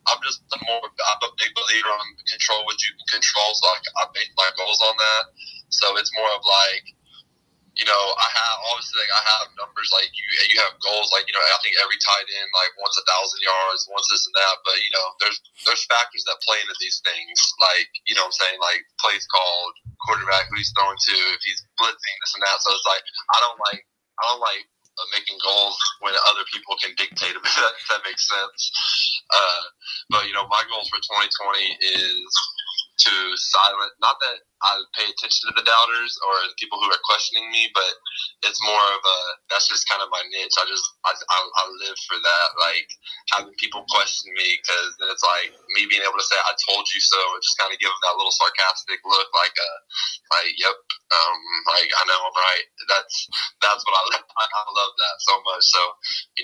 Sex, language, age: male, English, 20-39